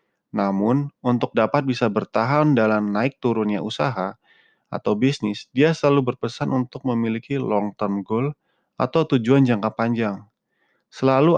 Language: Indonesian